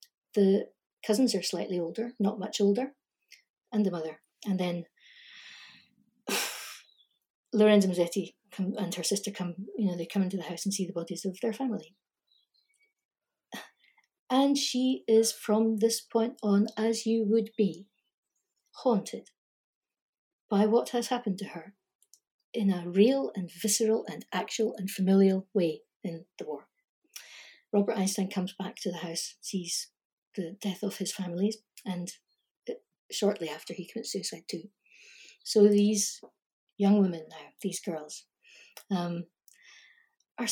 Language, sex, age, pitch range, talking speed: English, female, 60-79, 180-225 Hz, 140 wpm